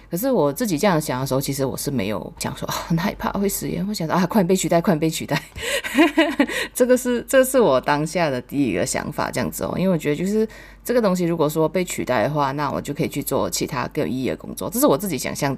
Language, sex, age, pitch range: Chinese, female, 20-39, 140-185 Hz